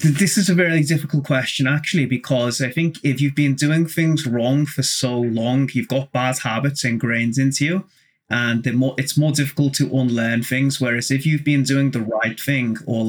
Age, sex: 30-49, male